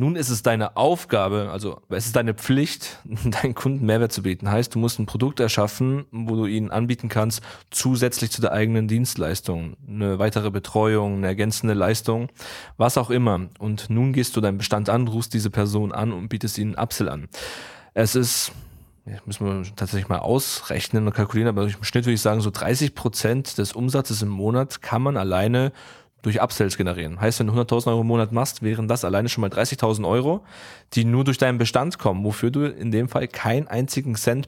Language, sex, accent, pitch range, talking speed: German, male, German, 105-120 Hz, 195 wpm